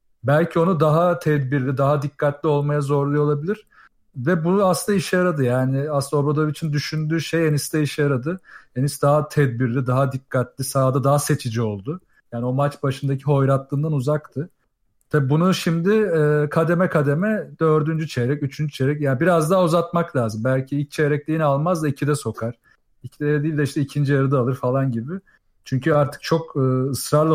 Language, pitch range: Turkish, 135-160 Hz